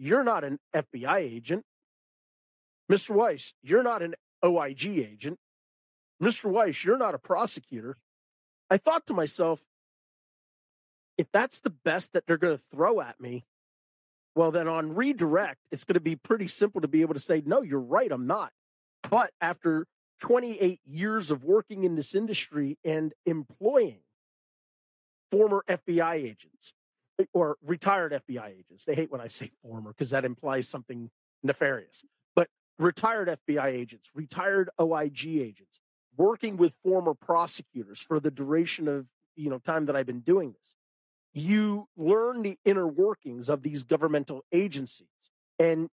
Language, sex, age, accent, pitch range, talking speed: English, male, 40-59, American, 140-185 Hz, 150 wpm